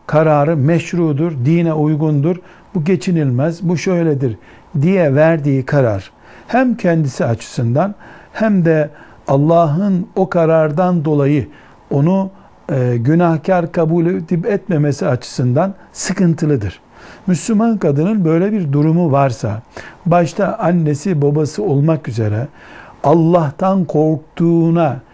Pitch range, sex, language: 145-180 Hz, male, Turkish